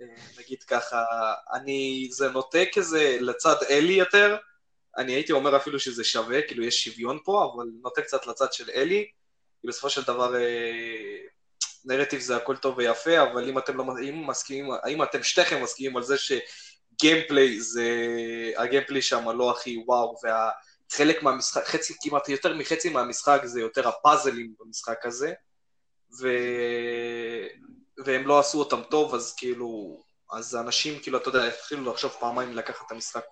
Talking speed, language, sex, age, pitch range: 140 wpm, Hebrew, male, 20-39, 120-150 Hz